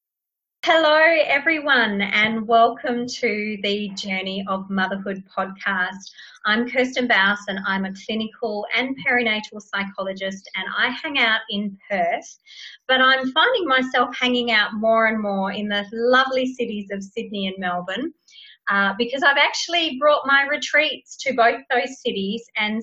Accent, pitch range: Australian, 195-250 Hz